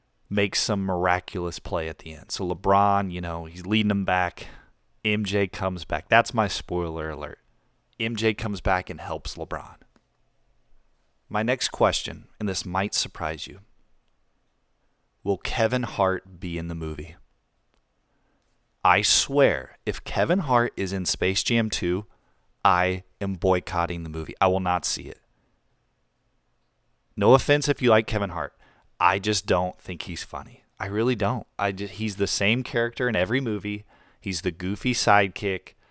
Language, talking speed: English, 150 wpm